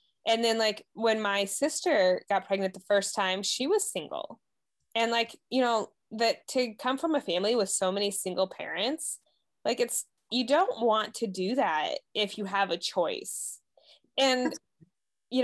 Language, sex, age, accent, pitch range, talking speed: English, female, 20-39, American, 185-235 Hz, 170 wpm